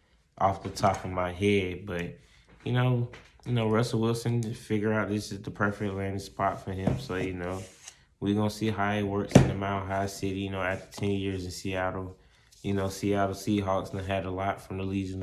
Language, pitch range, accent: English, 95-110 Hz, American